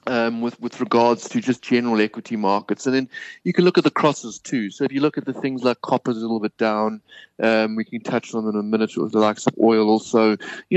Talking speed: 265 wpm